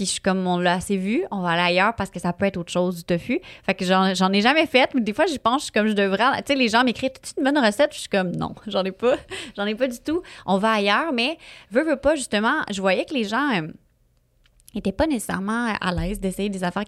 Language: French